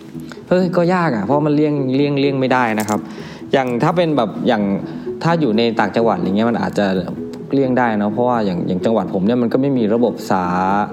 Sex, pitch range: male, 105-140 Hz